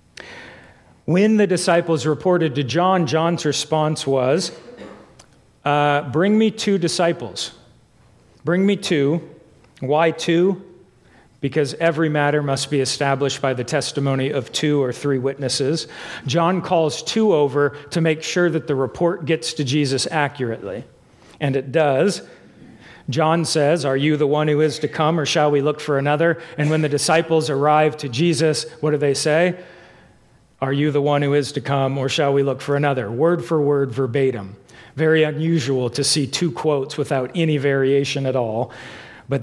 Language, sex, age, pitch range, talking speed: English, male, 40-59, 135-160 Hz, 165 wpm